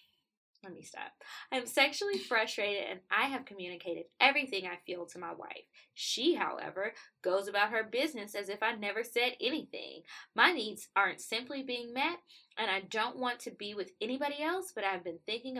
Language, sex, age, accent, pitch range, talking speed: English, female, 10-29, American, 190-270 Hz, 180 wpm